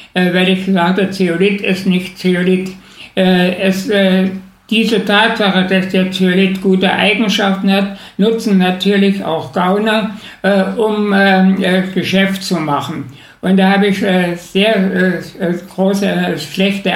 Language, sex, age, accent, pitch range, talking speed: German, male, 60-79, German, 185-205 Hz, 110 wpm